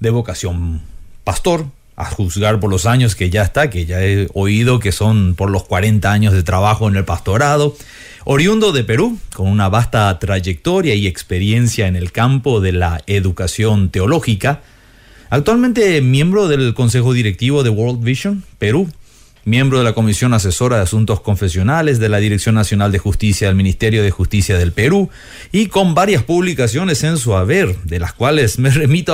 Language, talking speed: Spanish, 170 wpm